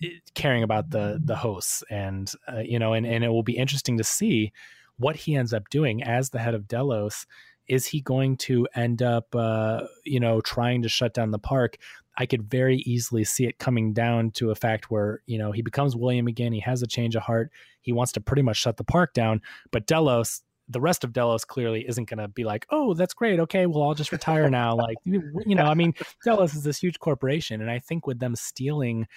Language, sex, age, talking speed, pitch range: English, male, 30-49, 230 wpm, 110-130 Hz